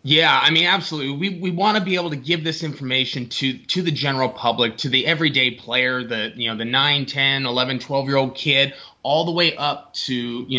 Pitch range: 115-140 Hz